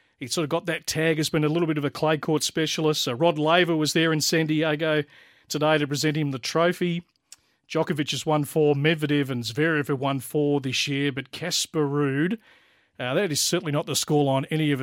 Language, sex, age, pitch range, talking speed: English, male, 40-59, 135-160 Hz, 220 wpm